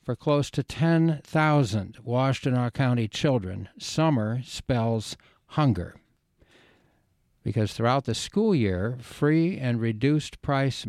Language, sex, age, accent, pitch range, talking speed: English, male, 60-79, American, 115-145 Hz, 100 wpm